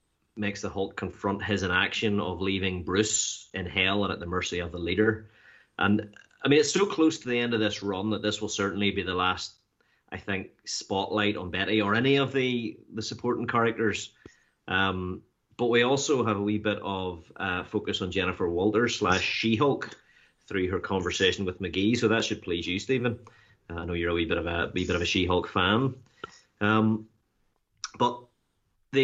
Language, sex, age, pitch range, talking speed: English, male, 30-49, 95-115 Hz, 200 wpm